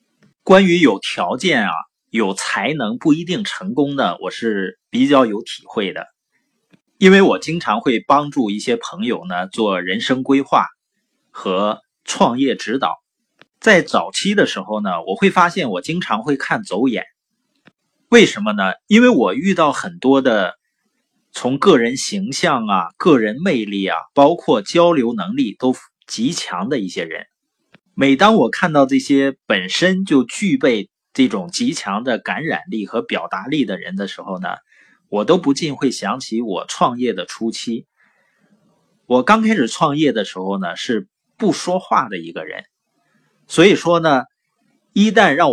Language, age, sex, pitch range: Chinese, 30-49, male, 135-205 Hz